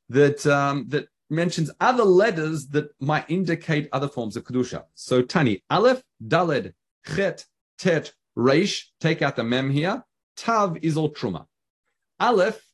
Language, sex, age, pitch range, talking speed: English, male, 30-49, 120-165 Hz, 140 wpm